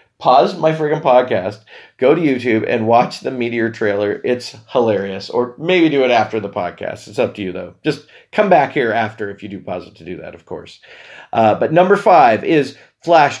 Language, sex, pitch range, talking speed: English, male, 110-150 Hz, 210 wpm